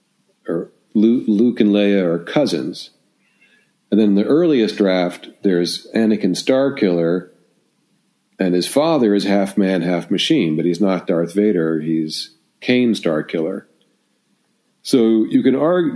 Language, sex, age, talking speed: English, male, 50-69, 130 wpm